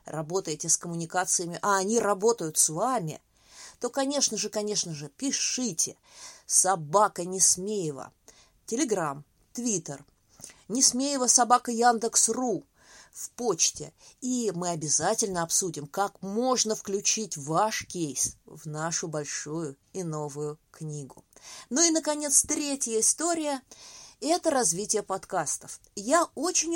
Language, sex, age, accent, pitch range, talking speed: Russian, female, 20-39, native, 165-250 Hz, 110 wpm